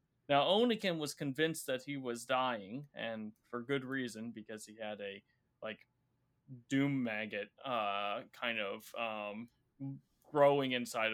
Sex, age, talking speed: male, 20-39, 135 wpm